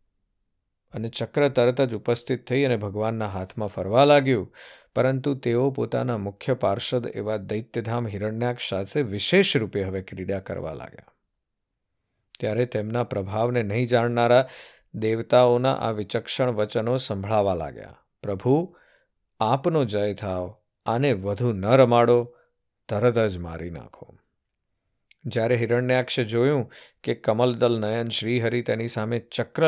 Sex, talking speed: male, 105 wpm